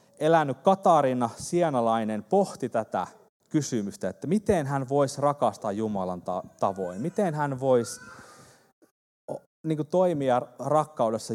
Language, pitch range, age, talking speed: Finnish, 110-155 Hz, 30-49, 105 wpm